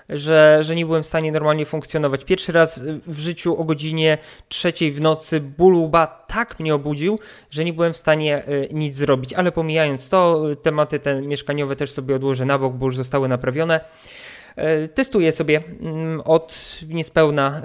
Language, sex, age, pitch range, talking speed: Polish, male, 20-39, 135-155 Hz, 160 wpm